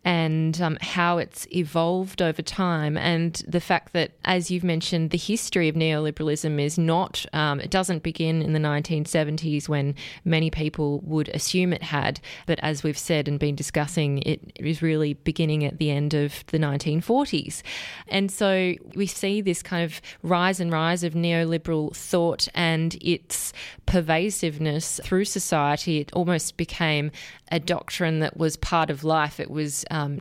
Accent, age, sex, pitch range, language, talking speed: Australian, 20-39, female, 150-175 Hz, English, 160 wpm